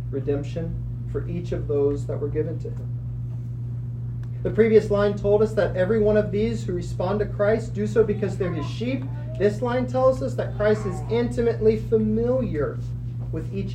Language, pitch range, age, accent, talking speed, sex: English, 120-130 Hz, 30-49, American, 180 wpm, male